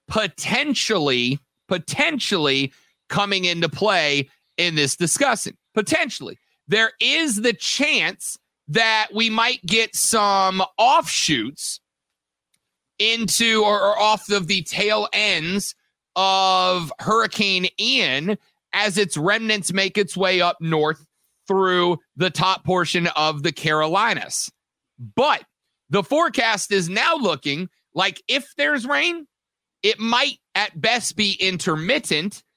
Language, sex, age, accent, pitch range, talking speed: English, male, 30-49, American, 175-225 Hz, 110 wpm